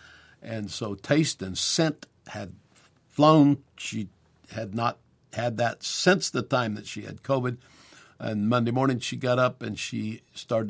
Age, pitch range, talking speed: 60-79, 110-135 Hz, 155 wpm